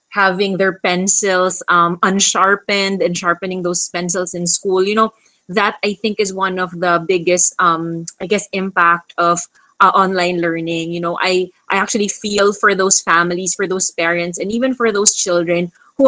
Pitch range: 175-205 Hz